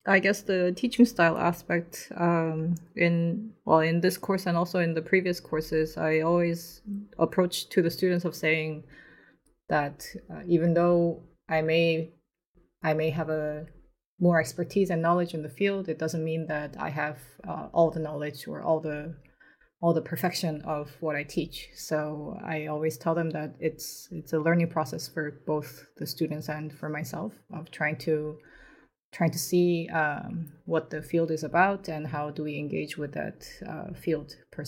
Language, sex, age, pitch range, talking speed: English, female, 20-39, 155-180 Hz, 180 wpm